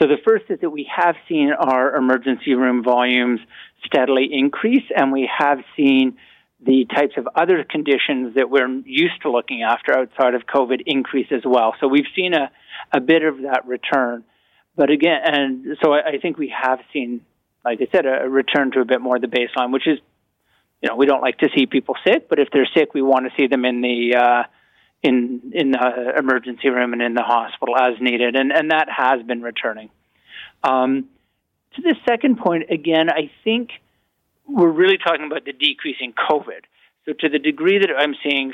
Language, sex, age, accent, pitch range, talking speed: English, male, 50-69, American, 125-150 Hz, 200 wpm